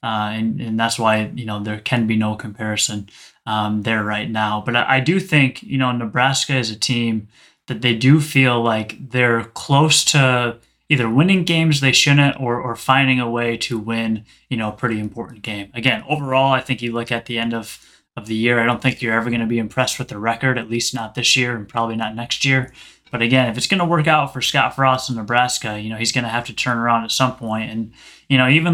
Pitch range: 115-130 Hz